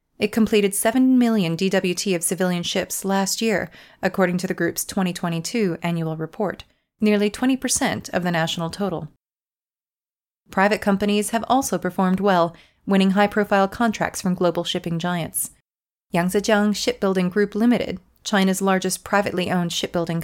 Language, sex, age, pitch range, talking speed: English, female, 30-49, 180-210 Hz, 130 wpm